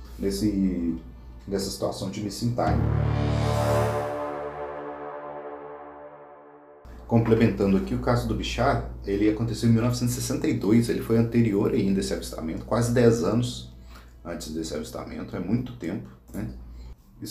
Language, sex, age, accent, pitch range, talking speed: Portuguese, male, 40-59, Brazilian, 75-115 Hz, 115 wpm